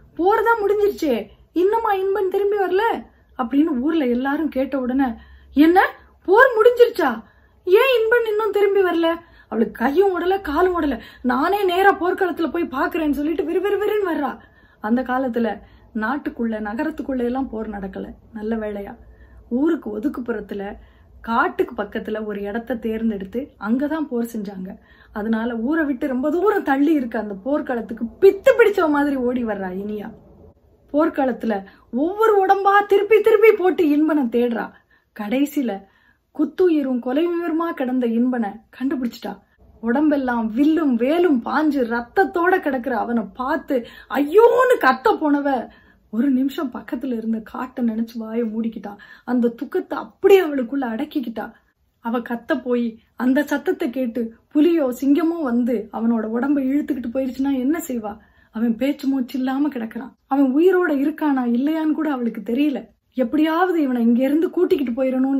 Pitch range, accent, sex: 235-335 Hz, native, female